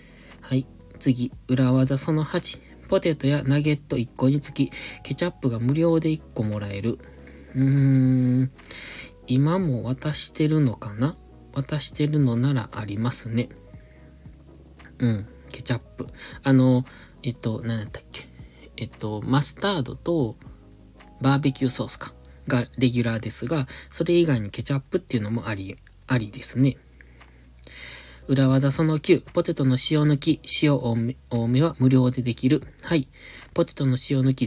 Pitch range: 115-145 Hz